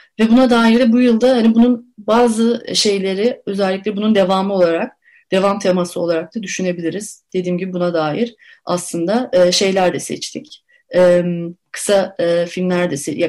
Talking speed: 130 wpm